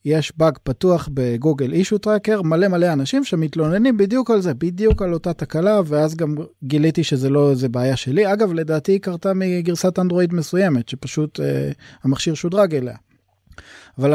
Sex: male